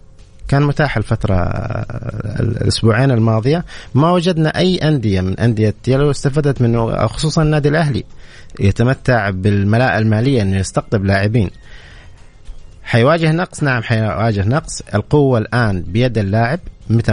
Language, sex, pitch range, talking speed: Arabic, male, 100-140 Hz, 115 wpm